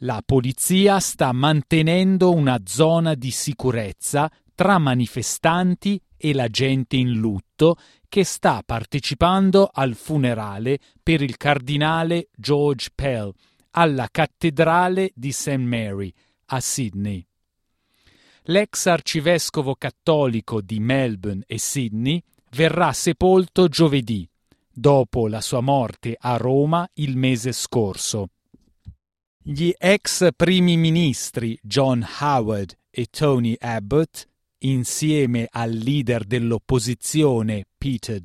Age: 40-59